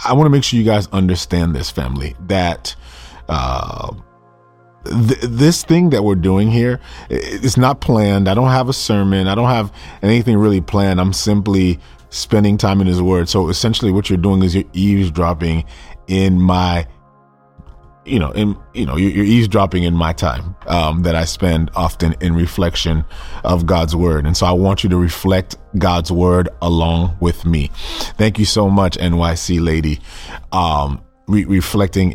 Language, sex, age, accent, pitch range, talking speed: English, male, 30-49, American, 85-100 Hz, 165 wpm